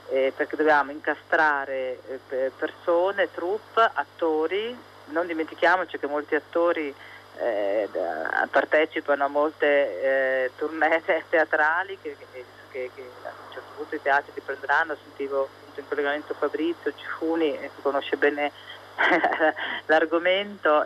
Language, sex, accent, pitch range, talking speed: Italian, female, native, 145-175 Hz, 110 wpm